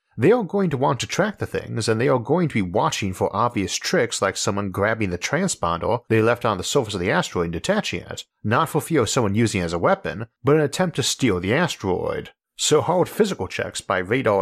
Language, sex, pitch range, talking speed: English, male, 100-145 Hz, 240 wpm